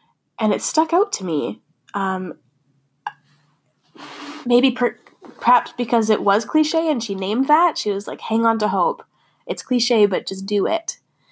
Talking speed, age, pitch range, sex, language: 160 wpm, 10-29, 190-225 Hz, female, English